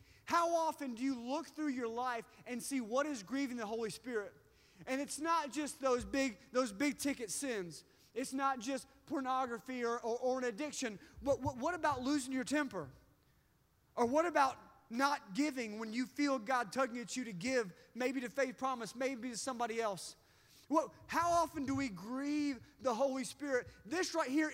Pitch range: 245-300 Hz